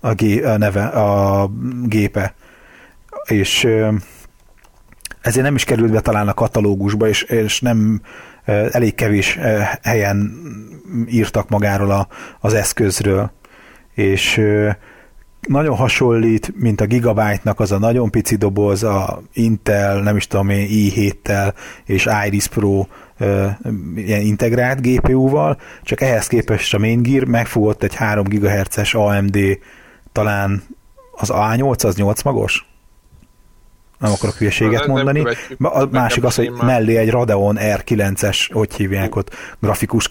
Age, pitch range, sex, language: 30-49, 100-115 Hz, male, Hungarian